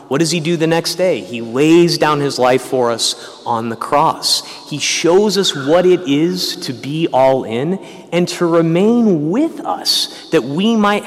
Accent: American